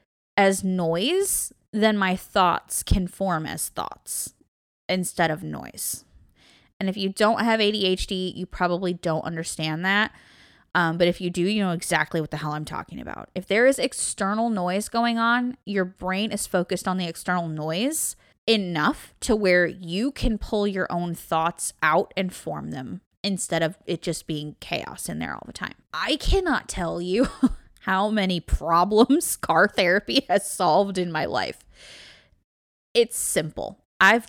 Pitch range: 170-210 Hz